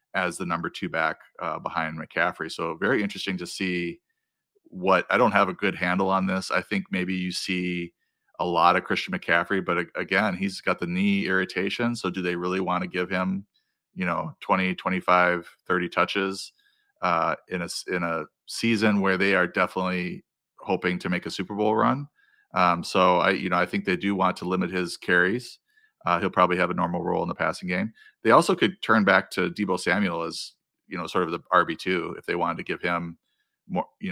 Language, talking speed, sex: English, 210 wpm, male